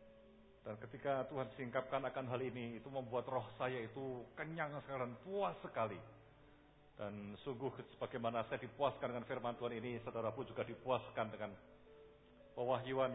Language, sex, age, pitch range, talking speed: English, male, 50-69, 130-180 Hz, 135 wpm